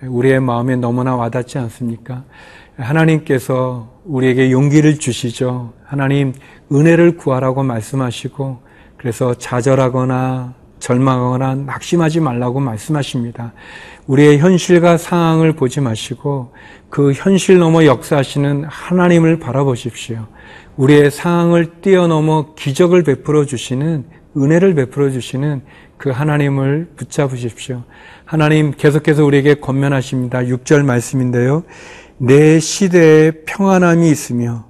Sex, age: male, 40-59